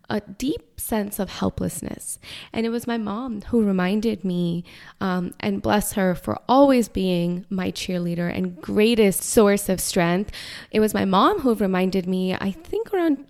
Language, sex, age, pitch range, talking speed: English, female, 20-39, 180-215 Hz, 165 wpm